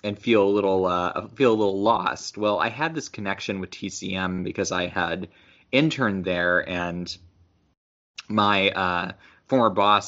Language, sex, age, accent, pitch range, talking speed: English, male, 20-39, American, 90-100 Hz, 155 wpm